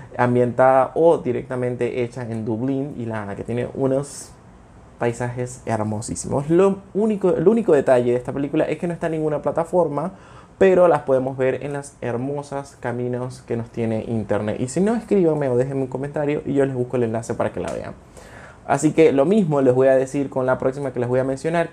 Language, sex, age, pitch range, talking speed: Spanish, male, 20-39, 120-160 Hz, 205 wpm